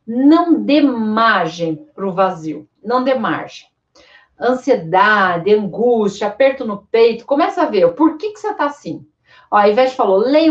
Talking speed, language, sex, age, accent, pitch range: 165 wpm, Portuguese, female, 40-59, Brazilian, 200-285 Hz